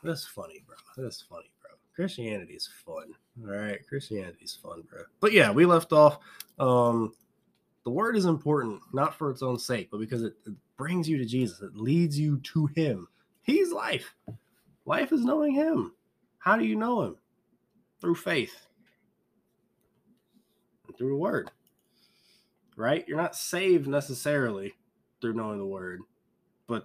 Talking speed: 155 wpm